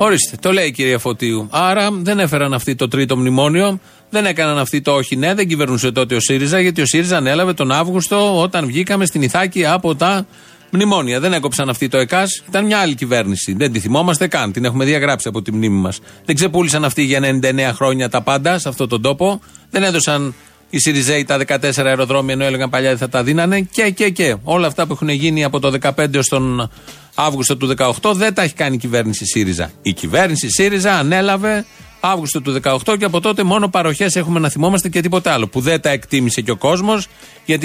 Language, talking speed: Greek, 205 wpm